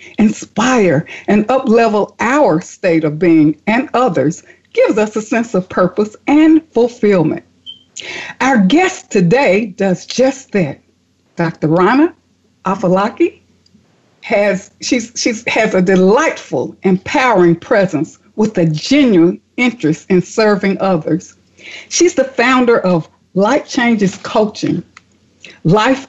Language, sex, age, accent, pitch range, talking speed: English, female, 60-79, American, 185-260 Hz, 115 wpm